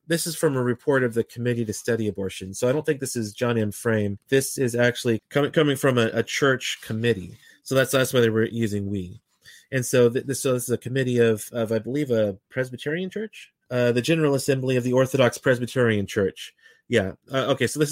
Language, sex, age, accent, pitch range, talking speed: English, male, 30-49, American, 115-135 Hz, 220 wpm